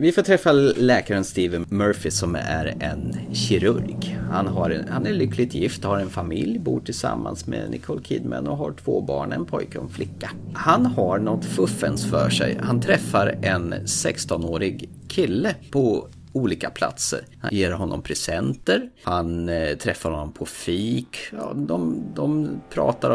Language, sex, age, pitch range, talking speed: Swedish, male, 30-49, 85-120 Hz, 160 wpm